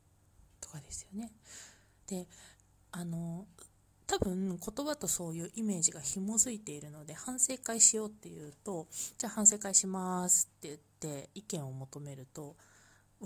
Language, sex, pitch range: Japanese, female, 140-205 Hz